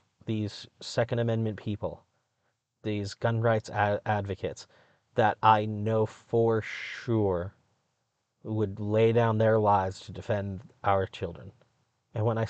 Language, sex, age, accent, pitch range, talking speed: English, male, 30-49, American, 105-120 Hz, 120 wpm